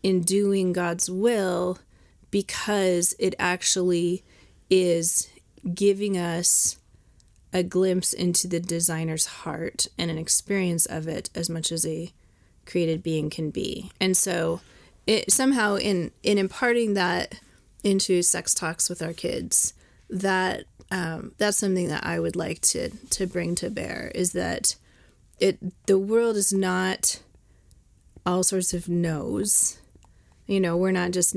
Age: 30-49